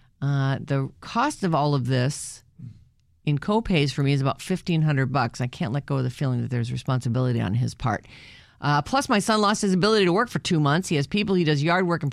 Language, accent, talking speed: English, American, 240 wpm